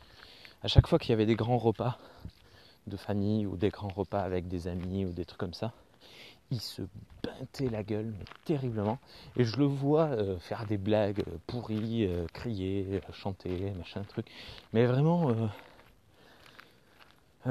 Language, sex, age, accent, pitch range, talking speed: French, male, 30-49, French, 100-120 Hz, 160 wpm